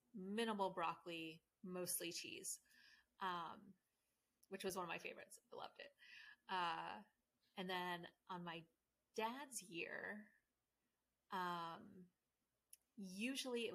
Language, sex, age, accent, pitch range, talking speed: English, female, 30-49, American, 170-200 Hz, 105 wpm